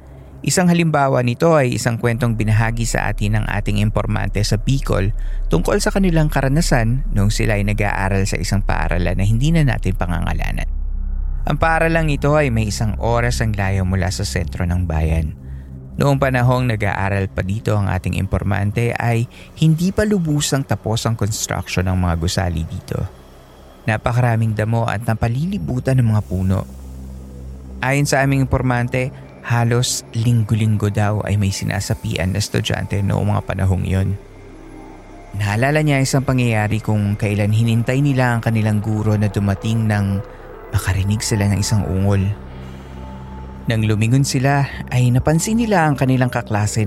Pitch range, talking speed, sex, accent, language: 95-125 Hz, 145 wpm, male, native, Filipino